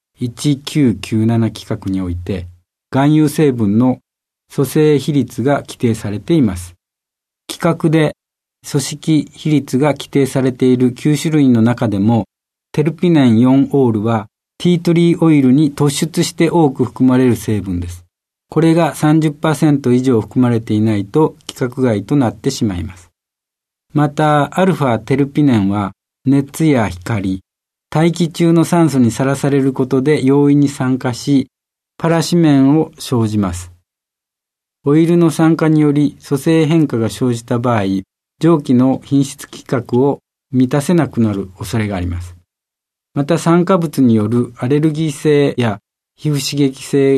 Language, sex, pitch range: Japanese, male, 115-150 Hz